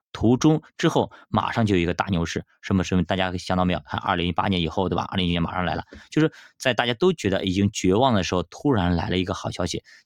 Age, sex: 20-39, male